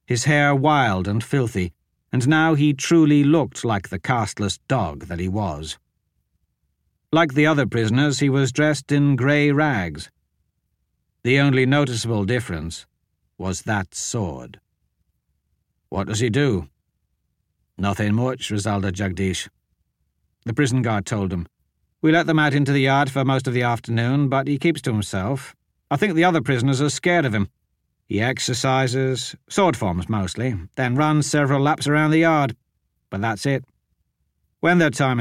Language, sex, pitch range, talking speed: English, male, 95-140 Hz, 155 wpm